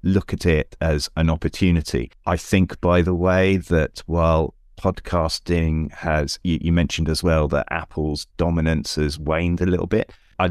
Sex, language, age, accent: male, English, 30-49, British